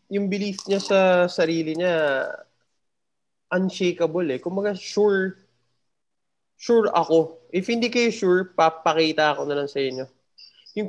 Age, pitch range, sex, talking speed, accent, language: 20-39, 150-190 Hz, male, 130 wpm, Filipino, English